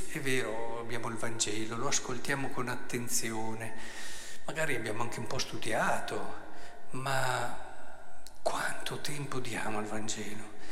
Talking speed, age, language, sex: 120 wpm, 50-69, Italian, male